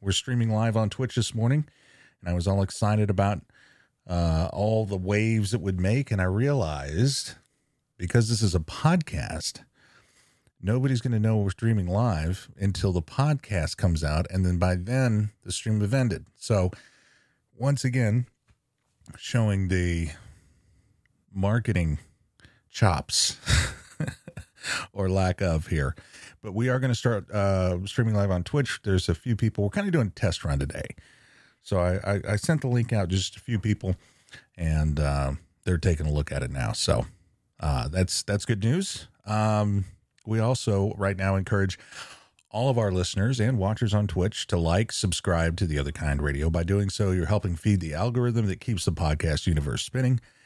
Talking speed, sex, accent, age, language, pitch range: 170 wpm, male, American, 40-59, English, 90-115 Hz